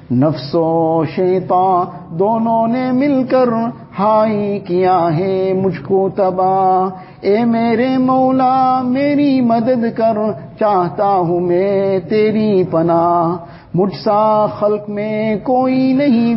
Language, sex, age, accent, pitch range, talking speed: English, male, 50-69, Indian, 185-230 Hz, 95 wpm